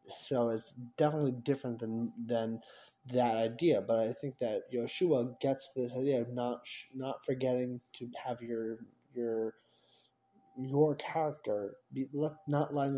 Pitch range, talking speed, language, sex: 115-140 Hz, 135 wpm, English, male